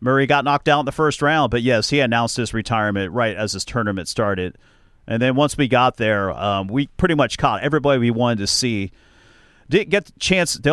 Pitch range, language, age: 100-135 Hz, English, 40-59